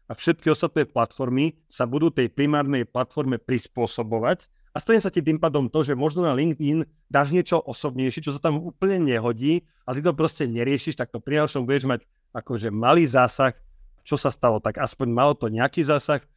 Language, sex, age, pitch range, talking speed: Slovak, male, 30-49, 130-155 Hz, 190 wpm